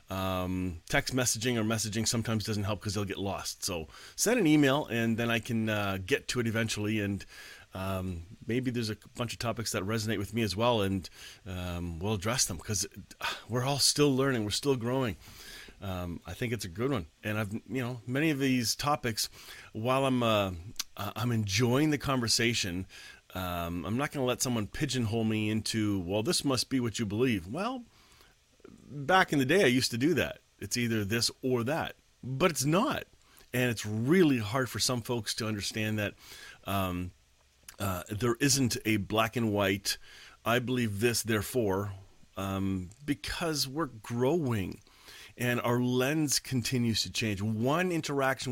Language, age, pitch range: English, 30-49, 100-130 Hz